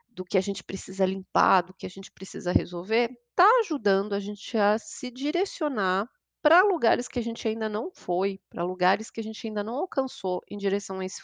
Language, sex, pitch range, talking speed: Portuguese, female, 185-260 Hz, 210 wpm